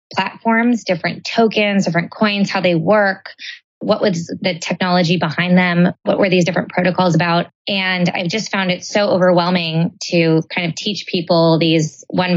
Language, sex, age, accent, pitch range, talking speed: English, female, 20-39, American, 175-200 Hz, 165 wpm